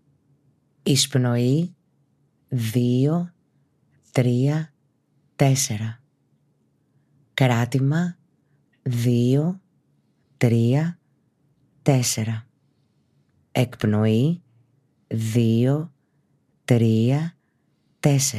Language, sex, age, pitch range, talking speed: Greek, female, 30-49, 125-150 Hz, 35 wpm